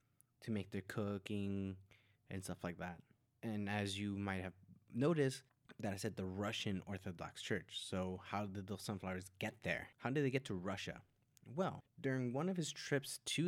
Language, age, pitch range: English, 20-39, 95-120 Hz